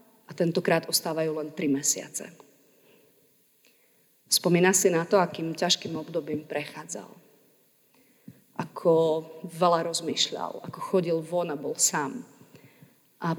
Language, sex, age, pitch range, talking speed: Slovak, female, 30-49, 165-195 Hz, 110 wpm